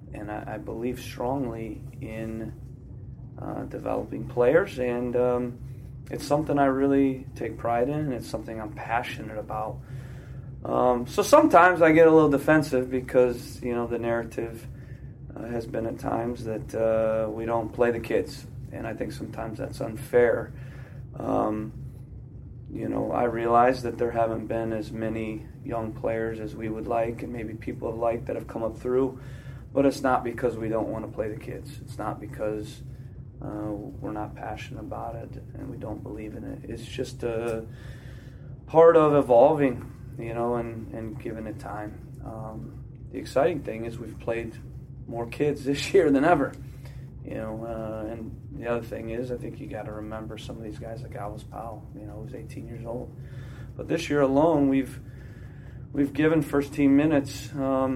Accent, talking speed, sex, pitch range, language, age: American, 175 wpm, male, 115-130 Hz, English, 30-49